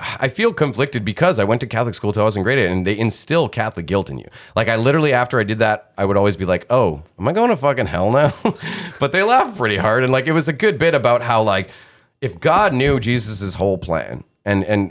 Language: English